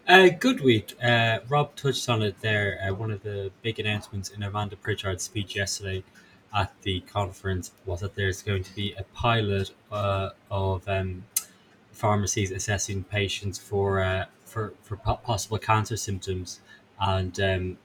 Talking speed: 160 wpm